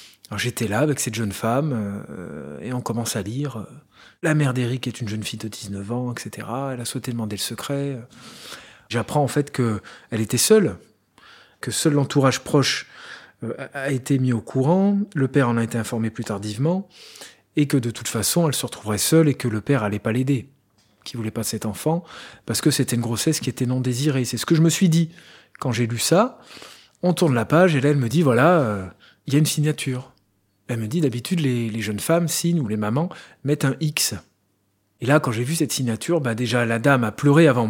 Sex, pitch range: male, 115-150 Hz